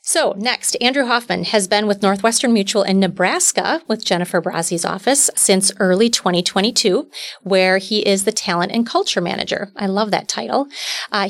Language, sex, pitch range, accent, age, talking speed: English, female, 180-225 Hz, American, 30-49, 165 wpm